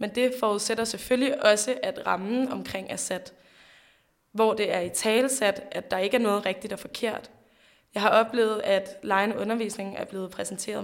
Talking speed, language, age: 175 wpm, Danish, 20-39